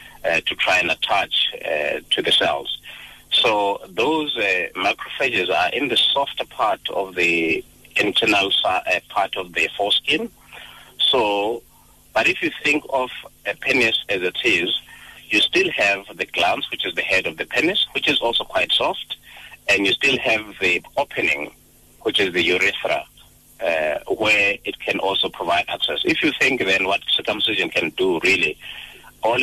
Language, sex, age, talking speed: English, male, 30-49, 165 wpm